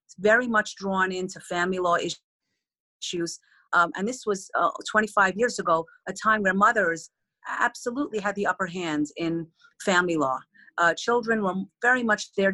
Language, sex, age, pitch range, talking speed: English, female, 40-59, 180-220 Hz, 160 wpm